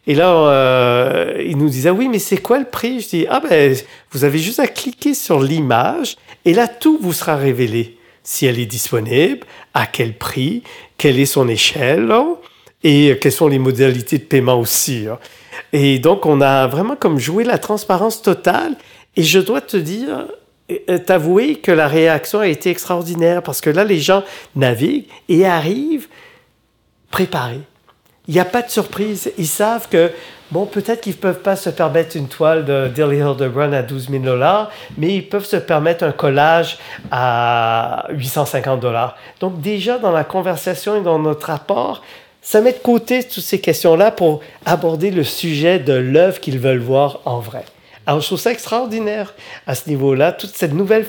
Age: 50-69